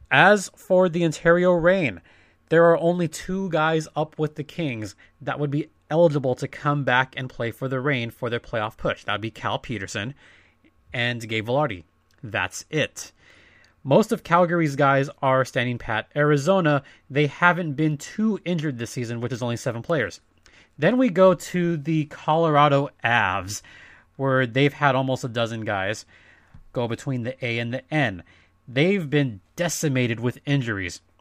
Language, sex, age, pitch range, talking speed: English, male, 30-49, 120-160 Hz, 165 wpm